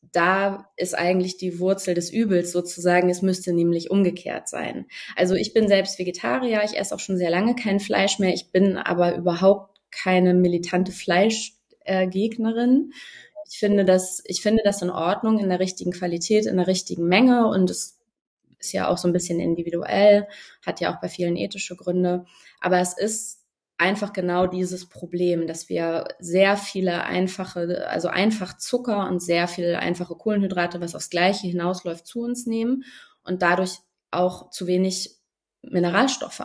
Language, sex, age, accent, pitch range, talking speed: German, female, 20-39, German, 175-205 Hz, 160 wpm